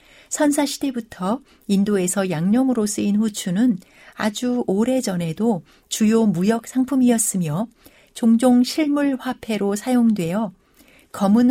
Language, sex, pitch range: Korean, female, 190-260 Hz